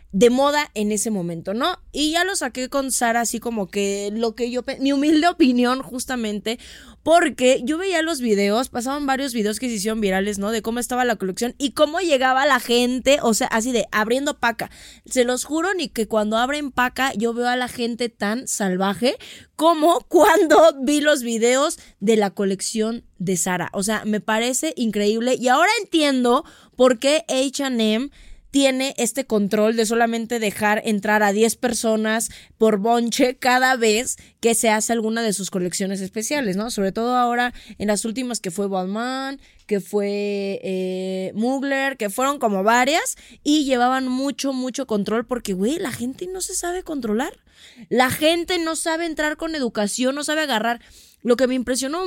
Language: Spanish